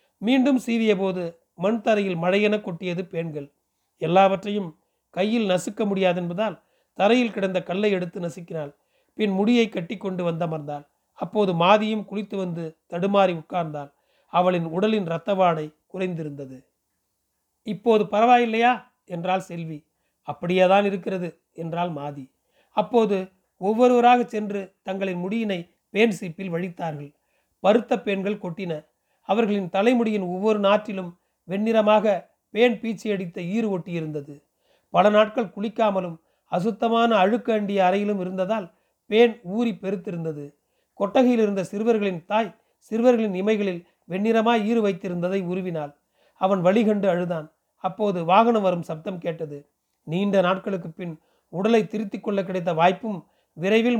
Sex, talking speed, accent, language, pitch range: male, 105 wpm, native, Tamil, 175-215 Hz